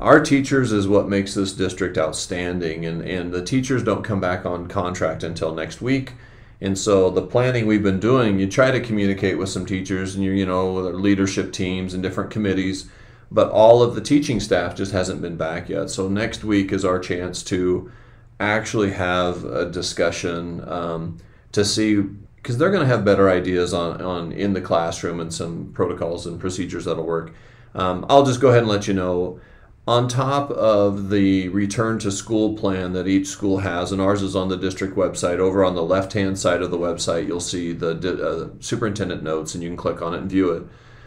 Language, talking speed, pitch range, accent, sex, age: English, 200 wpm, 90-115 Hz, American, male, 40-59